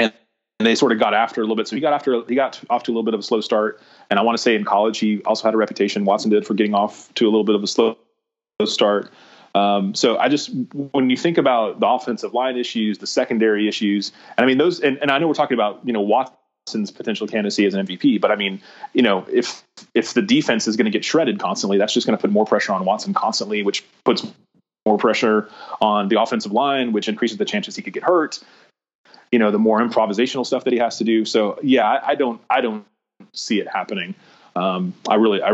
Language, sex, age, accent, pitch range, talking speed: English, male, 30-49, American, 105-130 Hz, 250 wpm